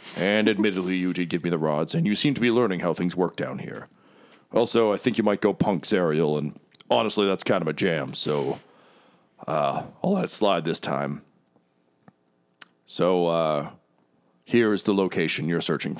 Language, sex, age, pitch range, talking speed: English, male, 40-59, 80-100 Hz, 190 wpm